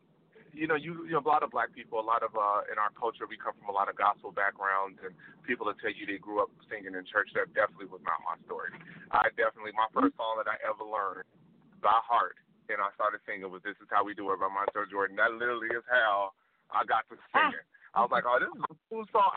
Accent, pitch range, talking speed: American, 100-140 Hz, 265 wpm